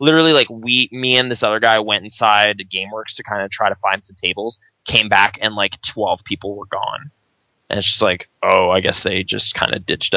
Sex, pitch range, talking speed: male, 100-115 Hz, 230 wpm